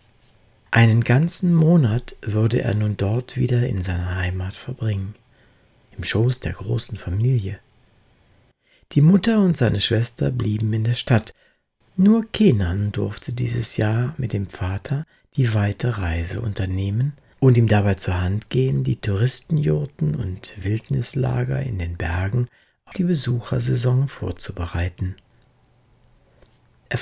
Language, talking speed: German, 125 wpm